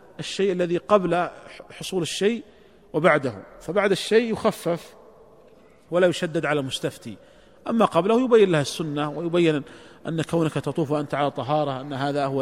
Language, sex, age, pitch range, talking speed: Arabic, male, 40-59, 150-200 Hz, 135 wpm